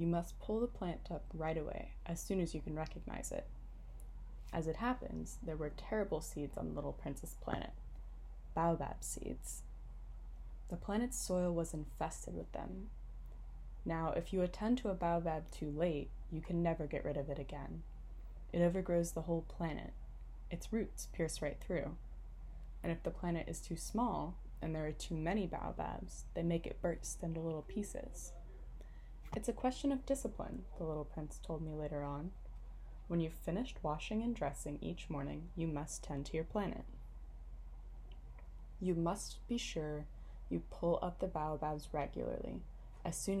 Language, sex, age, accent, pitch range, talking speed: English, female, 10-29, American, 145-175 Hz, 165 wpm